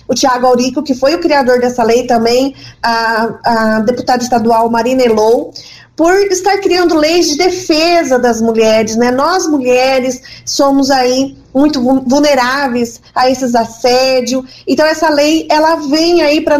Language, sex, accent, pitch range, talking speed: Portuguese, female, Brazilian, 250-320 Hz, 150 wpm